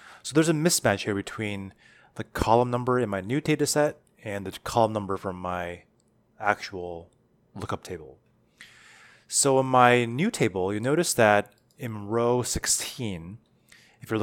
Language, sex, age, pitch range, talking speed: English, male, 20-39, 100-125 Hz, 150 wpm